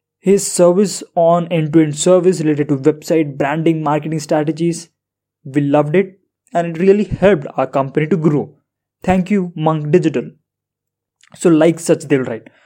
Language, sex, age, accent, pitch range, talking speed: English, male, 20-39, Indian, 145-185 Hz, 145 wpm